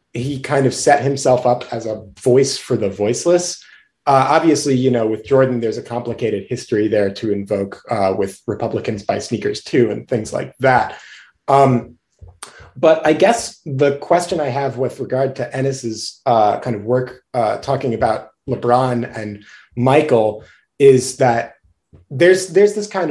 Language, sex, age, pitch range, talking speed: English, male, 30-49, 120-145 Hz, 165 wpm